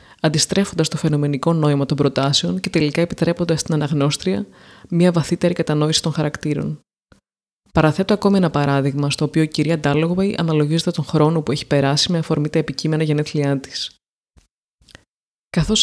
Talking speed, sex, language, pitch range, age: 145 wpm, female, Greek, 150-180 Hz, 20-39